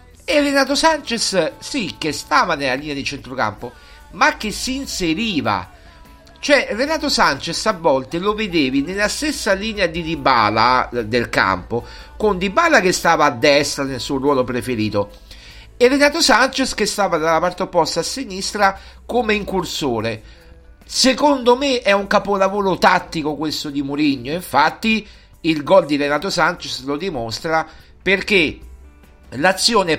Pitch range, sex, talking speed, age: 140-210 Hz, male, 140 wpm, 50-69